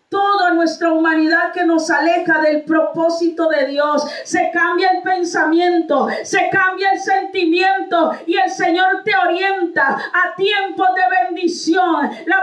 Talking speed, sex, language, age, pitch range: 135 wpm, female, Spanish, 40-59, 330-395 Hz